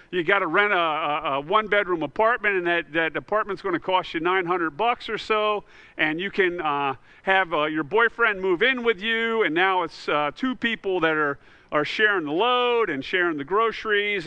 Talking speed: 200 wpm